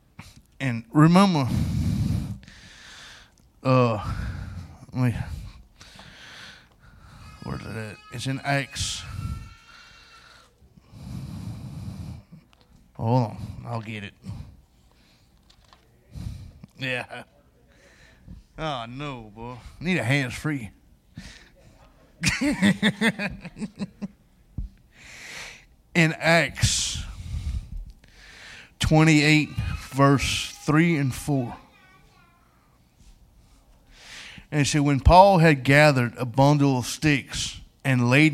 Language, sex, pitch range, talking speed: English, male, 115-150 Hz, 65 wpm